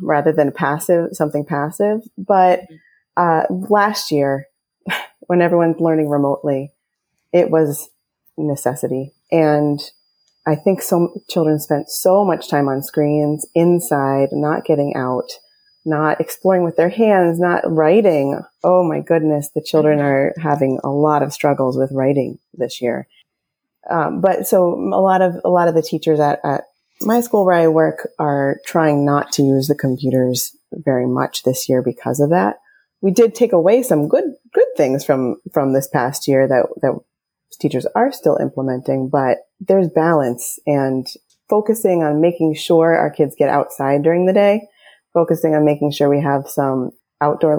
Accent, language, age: American, English, 30-49